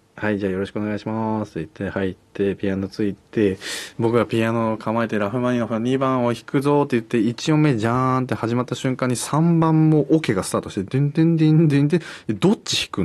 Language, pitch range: Japanese, 100-140 Hz